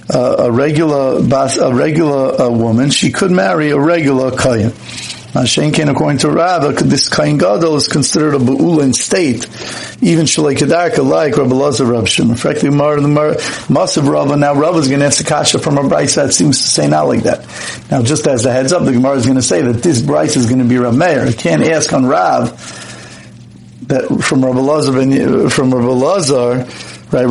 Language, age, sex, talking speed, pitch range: English, 50-69, male, 190 wpm, 125-155 Hz